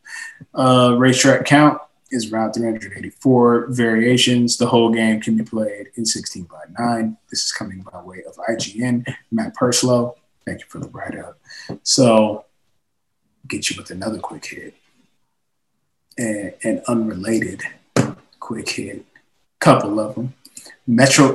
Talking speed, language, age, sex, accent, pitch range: 130 wpm, English, 20-39, male, American, 110-125 Hz